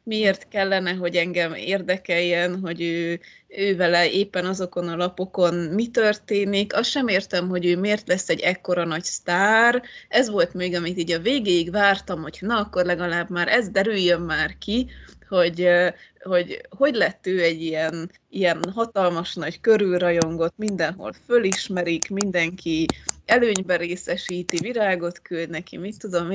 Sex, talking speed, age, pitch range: female, 150 wpm, 20-39, 175-210 Hz